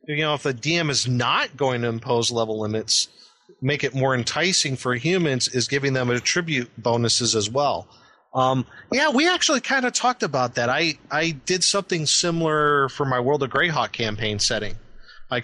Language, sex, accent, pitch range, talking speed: English, male, American, 110-140 Hz, 185 wpm